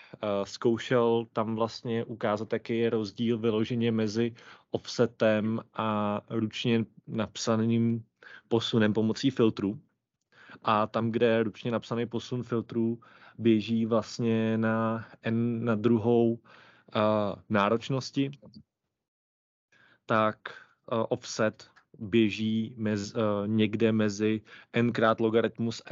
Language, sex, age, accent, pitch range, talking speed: Czech, male, 30-49, native, 110-120 Hz, 95 wpm